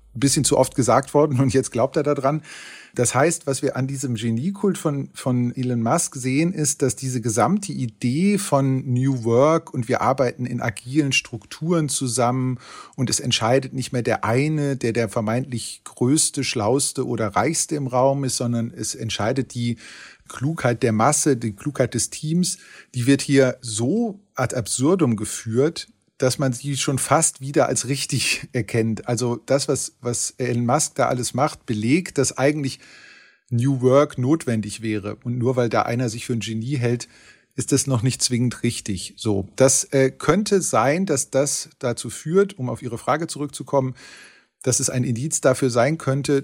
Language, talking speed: German, 175 wpm